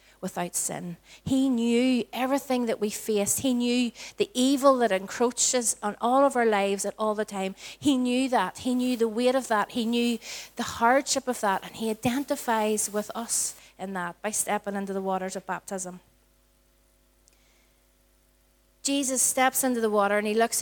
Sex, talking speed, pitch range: female, 175 wpm, 200-250 Hz